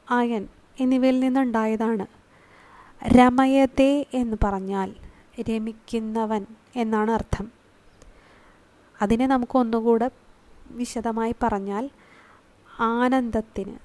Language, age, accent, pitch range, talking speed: Malayalam, 20-39, native, 220-260 Hz, 60 wpm